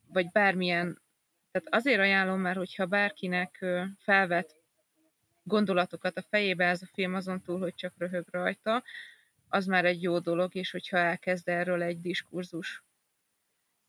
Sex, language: female, Hungarian